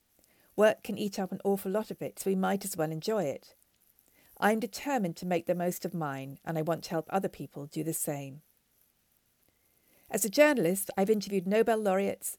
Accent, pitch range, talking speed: British, 170-200 Hz, 205 wpm